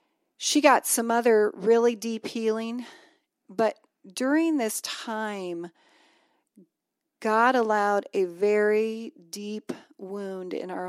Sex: female